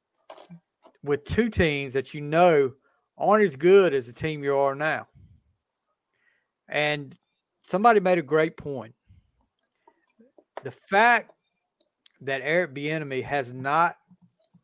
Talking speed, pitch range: 115 wpm, 145-200 Hz